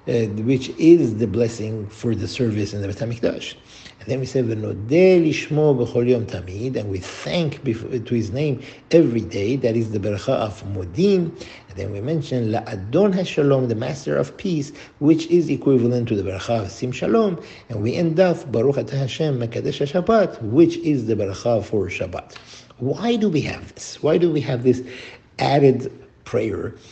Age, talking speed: 50-69, 170 wpm